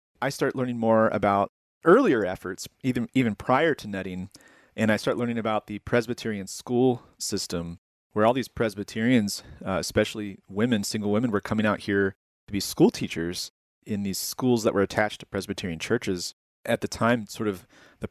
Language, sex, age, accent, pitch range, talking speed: English, male, 30-49, American, 95-115 Hz, 175 wpm